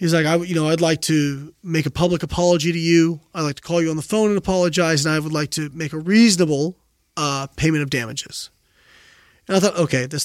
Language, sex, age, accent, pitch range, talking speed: English, male, 30-49, American, 140-175 Hz, 240 wpm